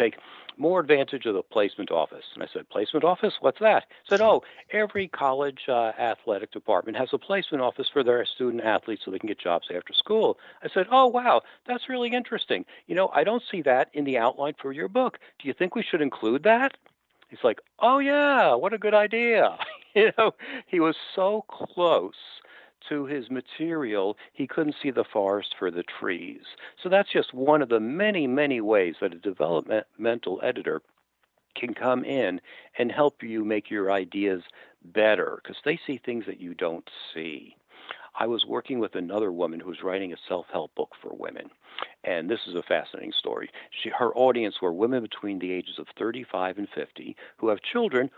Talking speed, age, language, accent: 190 wpm, 60-79, English, American